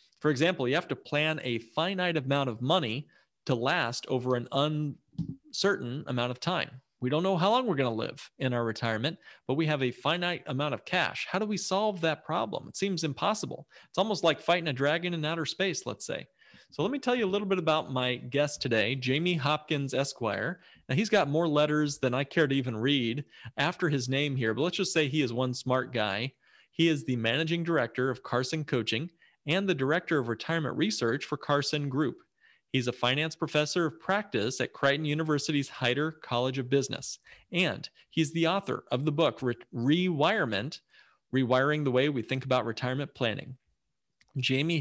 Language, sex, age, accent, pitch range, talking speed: English, male, 40-59, American, 125-165 Hz, 195 wpm